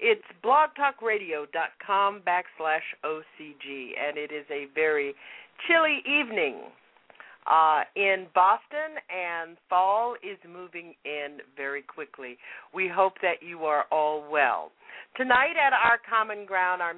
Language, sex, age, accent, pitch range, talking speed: English, female, 50-69, American, 165-225 Hz, 120 wpm